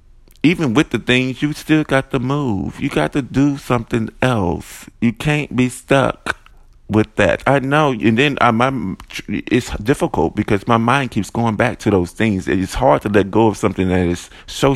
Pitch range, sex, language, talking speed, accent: 105-140 Hz, male, English, 185 wpm, American